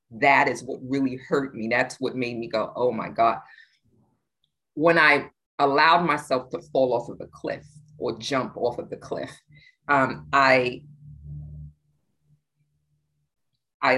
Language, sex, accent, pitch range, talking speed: English, female, American, 120-155 Hz, 140 wpm